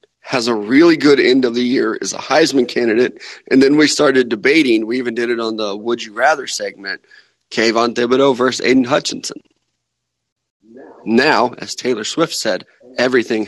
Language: English